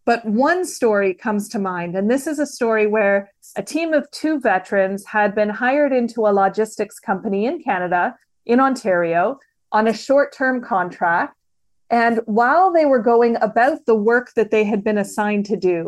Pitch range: 200-245 Hz